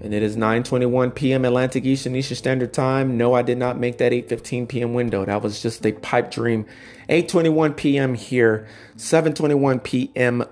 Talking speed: 170 wpm